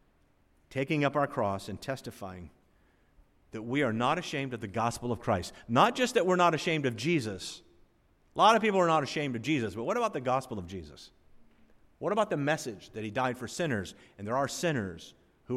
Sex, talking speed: male, 210 wpm